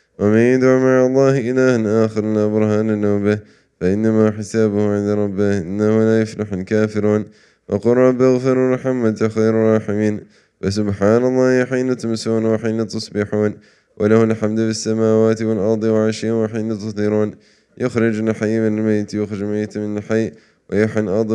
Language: English